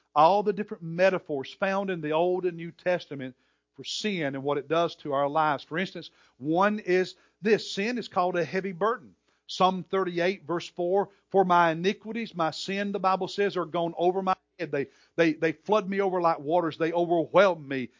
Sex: male